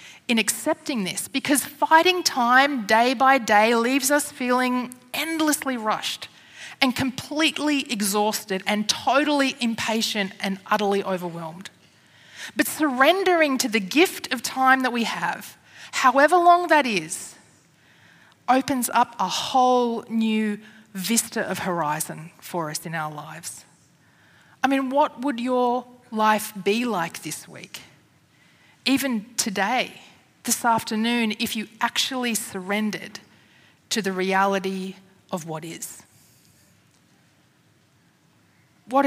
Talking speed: 115 wpm